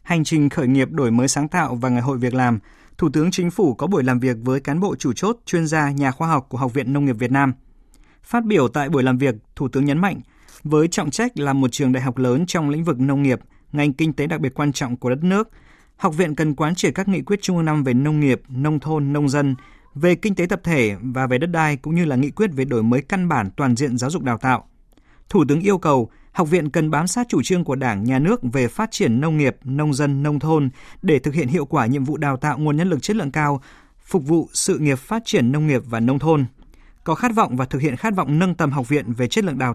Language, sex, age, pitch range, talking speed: Vietnamese, male, 20-39, 130-165 Hz, 275 wpm